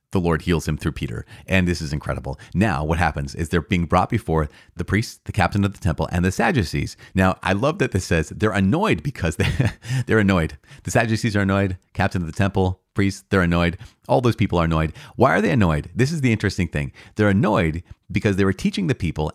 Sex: male